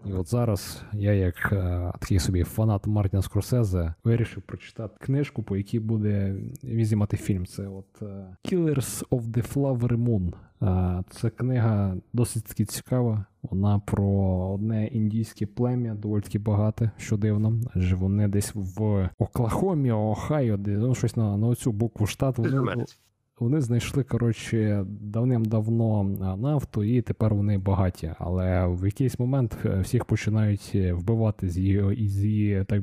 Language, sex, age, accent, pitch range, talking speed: Ukrainian, male, 20-39, native, 95-115 Hz, 140 wpm